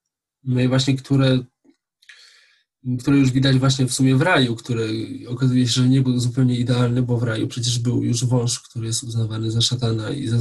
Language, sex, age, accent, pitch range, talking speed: Polish, male, 20-39, native, 115-130 Hz, 195 wpm